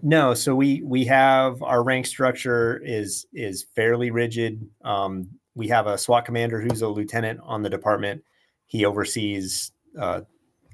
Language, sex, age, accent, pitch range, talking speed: English, male, 30-49, American, 95-115 Hz, 150 wpm